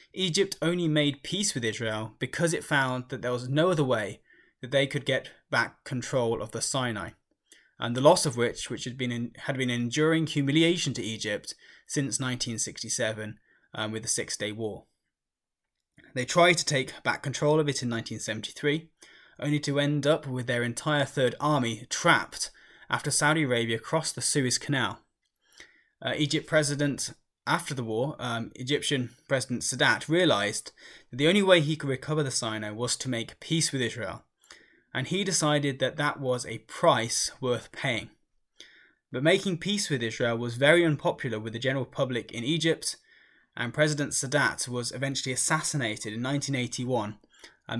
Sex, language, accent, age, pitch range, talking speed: male, English, British, 10-29, 120-150 Hz, 165 wpm